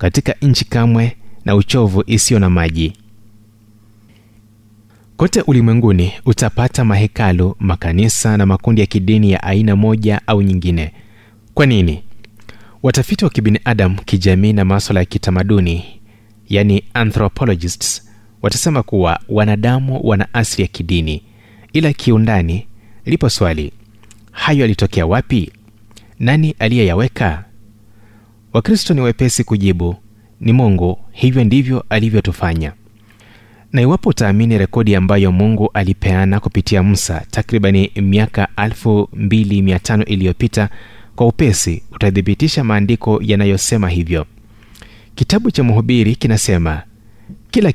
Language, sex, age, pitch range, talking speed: Swahili, male, 30-49, 100-115 Hz, 105 wpm